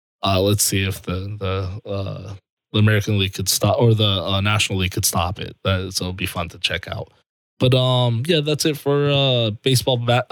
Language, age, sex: English, 20-39, male